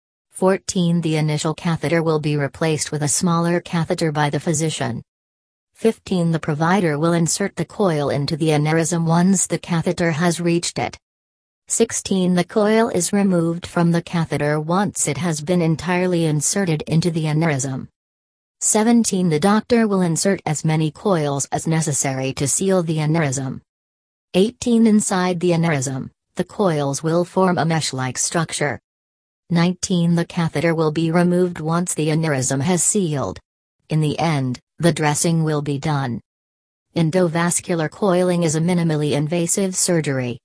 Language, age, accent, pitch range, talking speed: English, 40-59, American, 150-175 Hz, 145 wpm